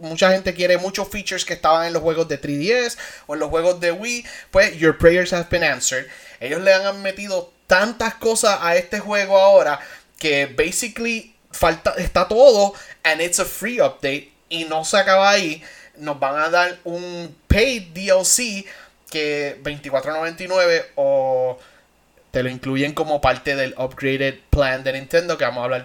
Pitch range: 155-200 Hz